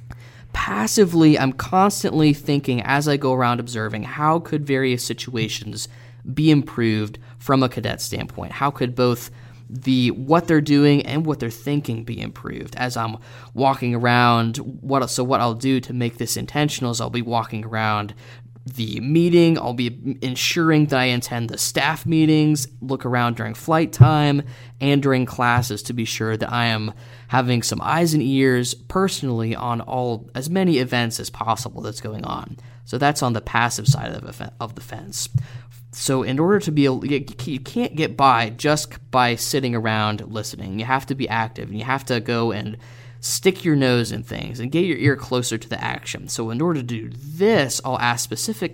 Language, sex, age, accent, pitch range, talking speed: English, male, 20-39, American, 115-140 Hz, 185 wpm